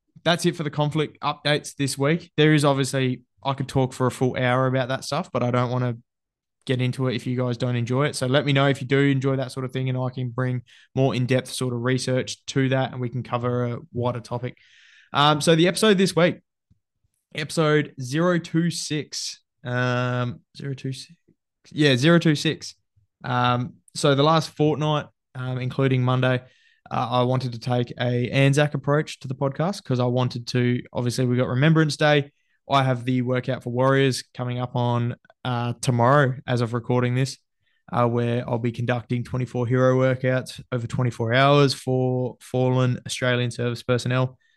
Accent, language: Australian, English